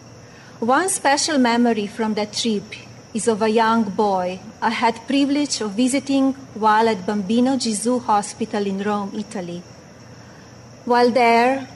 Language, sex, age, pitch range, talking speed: English, female, 30-49, 210-250 Hz, 135 wpm